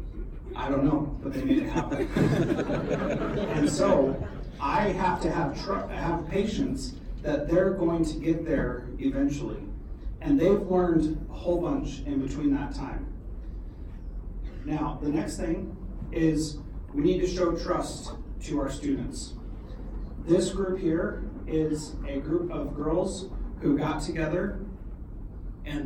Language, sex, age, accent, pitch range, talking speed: English, male, 40-59, American, 140-170 Hz, 135 wpm